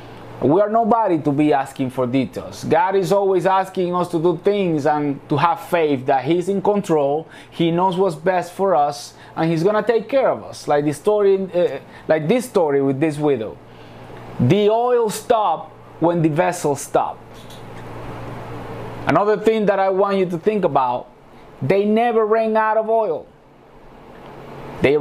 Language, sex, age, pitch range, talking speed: English, male, 30-49, 135-200 Hz, 170 wpm